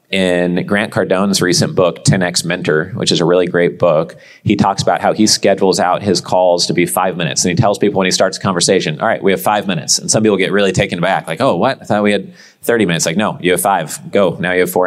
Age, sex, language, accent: 30-49, male, English, American